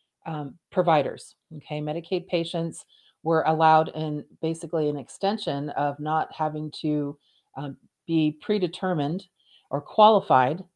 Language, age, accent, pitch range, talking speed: English, 40-59, American, 155-185 Hz, 110 wpm